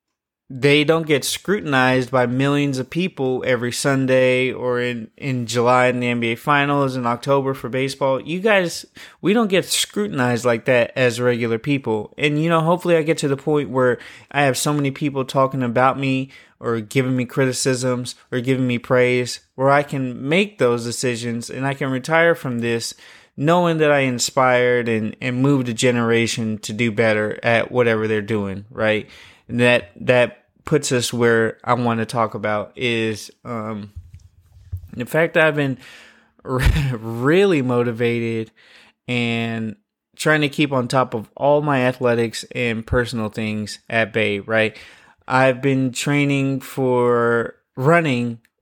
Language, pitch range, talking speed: English, 115-135 Hz, 160 wpm